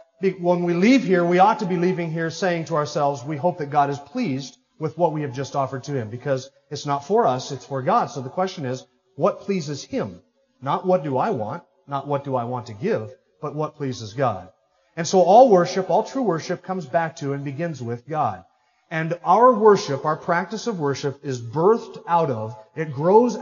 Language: English